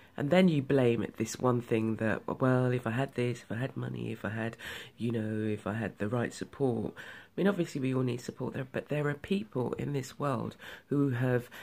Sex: female